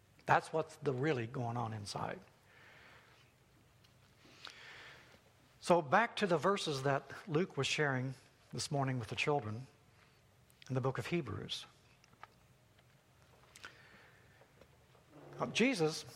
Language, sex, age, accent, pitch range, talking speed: English, male, 60-79, American, 130-170 Hz, 100 wpm